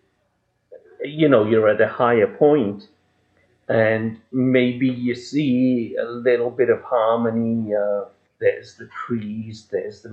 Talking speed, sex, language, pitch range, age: 130 wpm, male, English, 105-130 Hz, 50-69